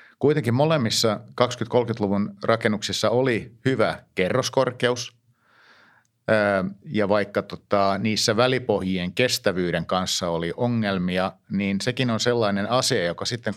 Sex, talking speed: male, 105 wpm